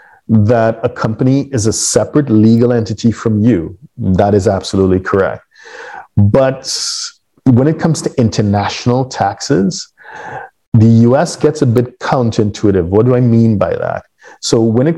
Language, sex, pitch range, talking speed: English, male, 100-125 Hz, 145 wpm